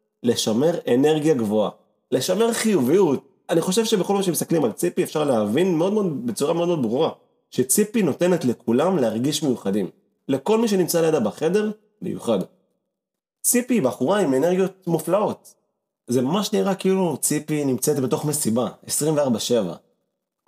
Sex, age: male, 30-49